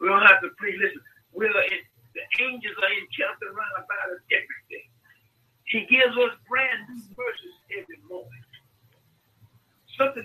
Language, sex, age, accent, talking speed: English, male, 60-79, American, 160 wpm